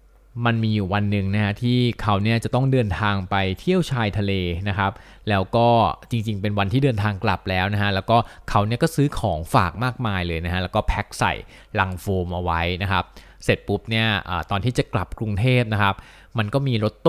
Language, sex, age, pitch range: Thai, male, 20-39, 95-125 Hz